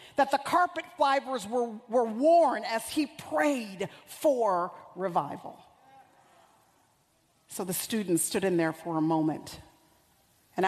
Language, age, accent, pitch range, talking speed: English, 50-69, American, 165-215 Hz, 125 wpm